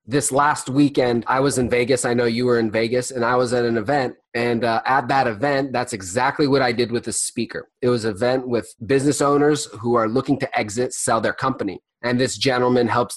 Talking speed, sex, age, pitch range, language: 230 wpm, male, 20-39, 115-135 Hz, English